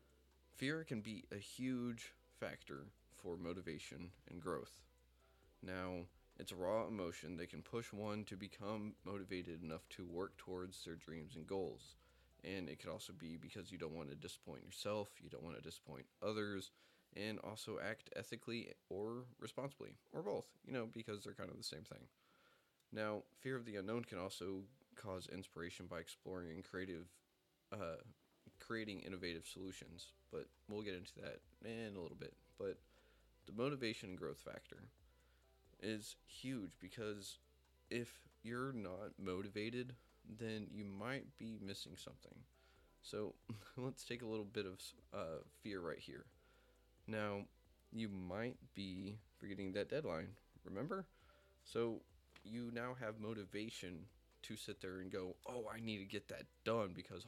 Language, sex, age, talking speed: English, male, 20-39, 155 wpm